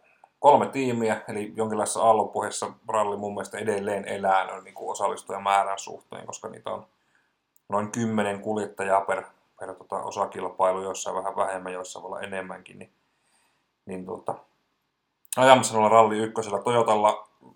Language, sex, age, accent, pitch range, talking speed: Finnish, male, 30-49, native, 95-110 Hz, 115 wpm